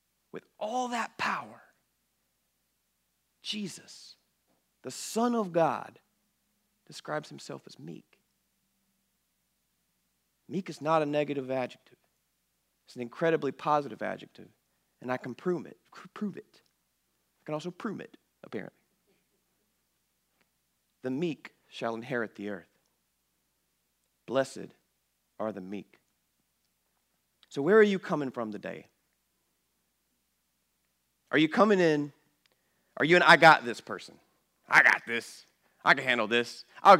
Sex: male